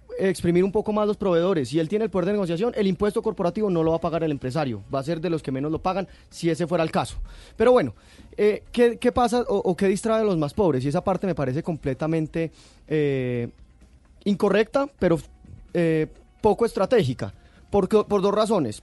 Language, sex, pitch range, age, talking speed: Spanish, male, 155-210 Hz, 30-49, 215 wpm